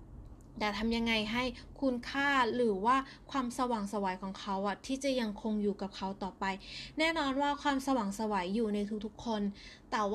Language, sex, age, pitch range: Thai, female, 20-39, 210-270 Hz